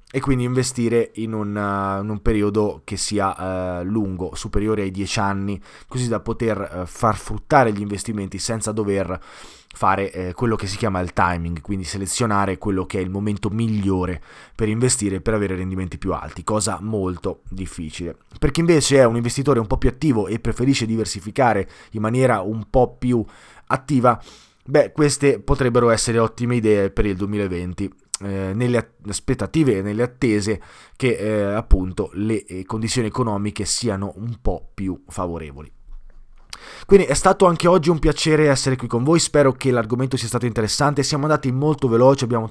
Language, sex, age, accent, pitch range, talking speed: Italian, male, 20-39, native, 100-125 Hz, 170 wpm